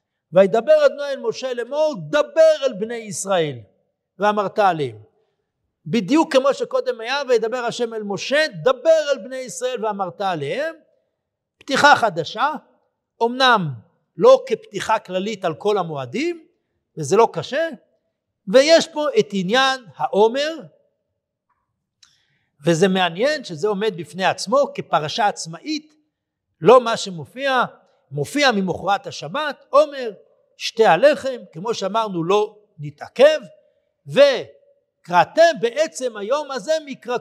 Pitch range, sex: 195-290 Hz, male